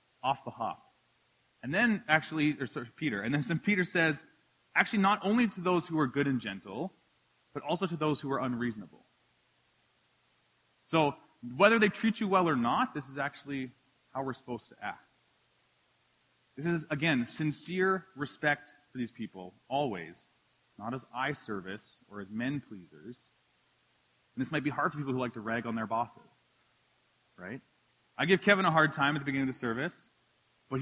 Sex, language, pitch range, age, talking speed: male, English, 130-185 Hz, 30-49, 175 wpm